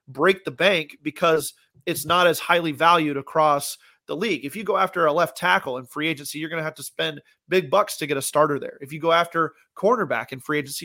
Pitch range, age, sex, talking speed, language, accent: 150-175 Hz, 30-49, male, 240 wpm, English, American